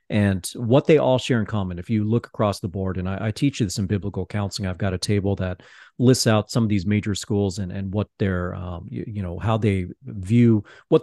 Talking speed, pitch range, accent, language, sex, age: 245 wpm, 95-120 Hz, American, English, male, 40-59